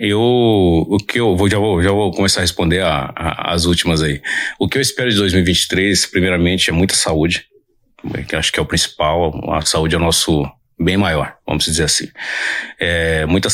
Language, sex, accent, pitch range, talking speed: Portuguese, male, Brazilian, 85-105 Hz, 180 wpm